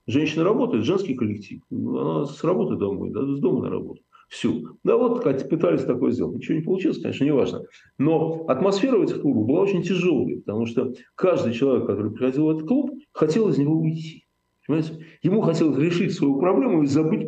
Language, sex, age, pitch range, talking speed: Russian, male, 50-69, 130-200 Hz, 190 wpm